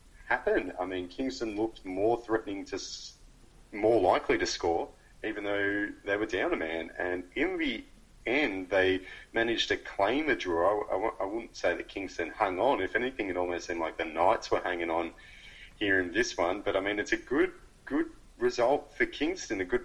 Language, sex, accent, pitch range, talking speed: English, male, Australian, 95-135 Hz, 195 wpm